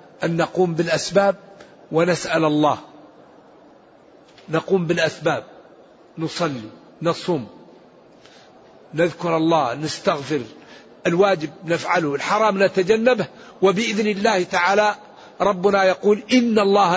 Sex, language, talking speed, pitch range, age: male, Arabic, 80 wpm, 175-225 Hz, 50-69